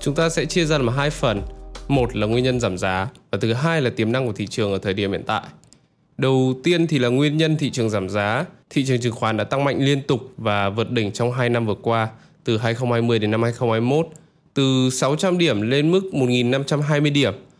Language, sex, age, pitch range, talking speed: Vietnamese, male, 20-39, 115-155 Hz, 230 wpm